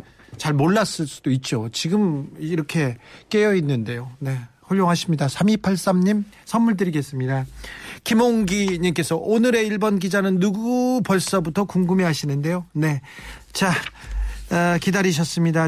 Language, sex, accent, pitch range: Korean, male, native, 145-190 Hz